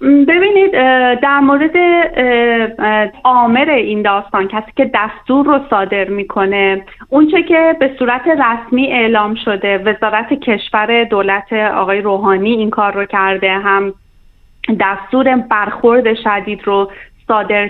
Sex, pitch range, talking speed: female, 200-250 Hz, 120 wpm